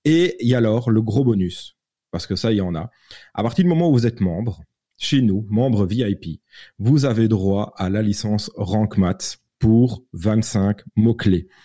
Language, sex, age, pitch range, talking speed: French, male, 30-49, 95-120 Hz, 190 wpm